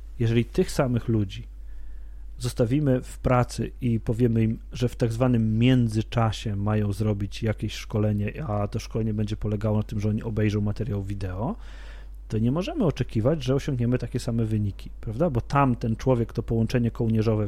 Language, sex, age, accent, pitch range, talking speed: Polish, male, 40-59, native, 110-140 Hz, 165 wpm